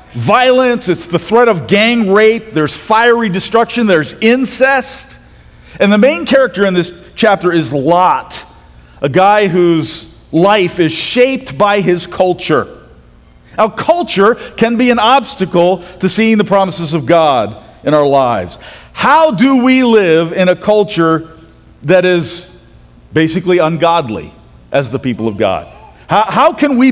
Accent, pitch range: American, 170-230 Hz